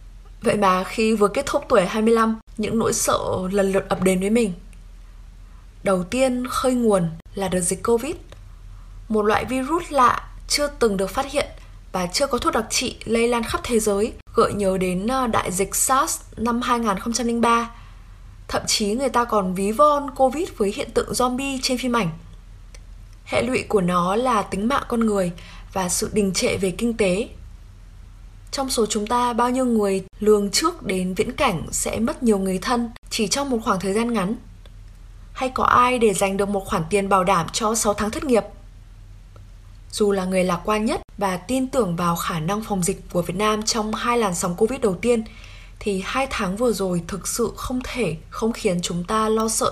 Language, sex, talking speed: Vietnamese, female, 195 wpm